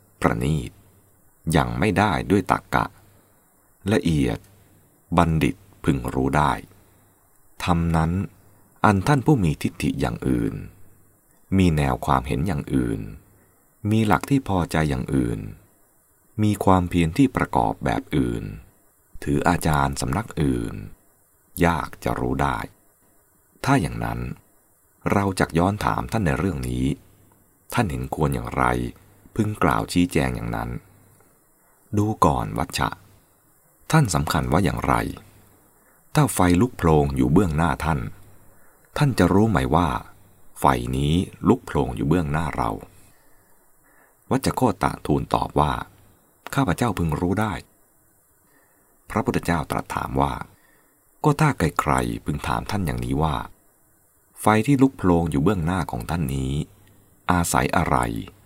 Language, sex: English, male